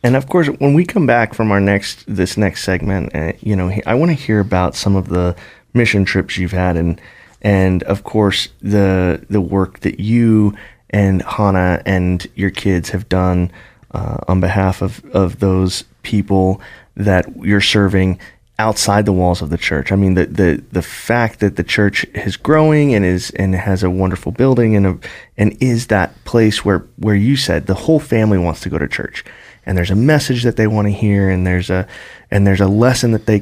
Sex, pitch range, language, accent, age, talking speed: male, 95-110 Hz, English, American, 30-49, 205 wpm